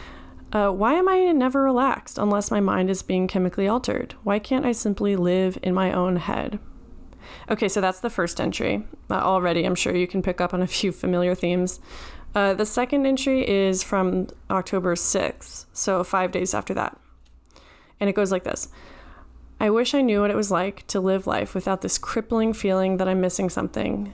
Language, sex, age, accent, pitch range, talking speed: English, female, 20-39, American, 180-205 Hz, 195 wpm